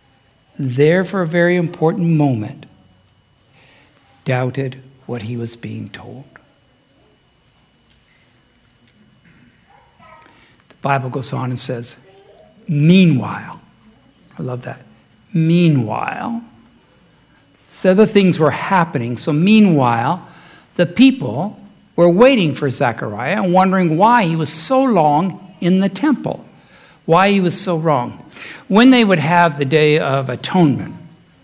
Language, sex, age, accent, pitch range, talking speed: English, male, 60-79, American, 130-180 Hz, 115 wpm